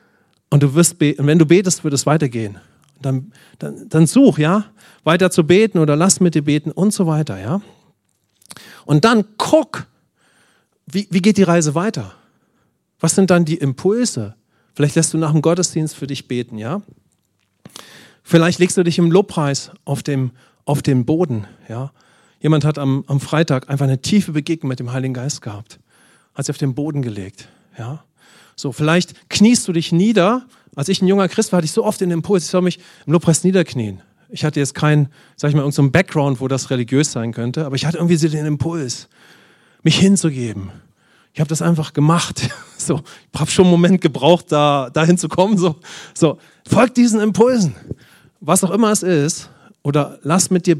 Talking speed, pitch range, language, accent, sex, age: 185 wpm, 135-180 Hz, English, German, male, 40-59